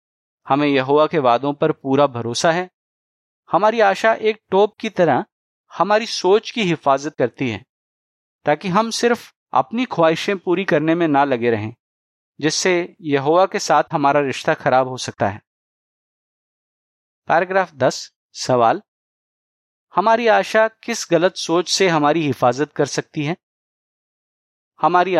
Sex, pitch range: male, 135-195 Hz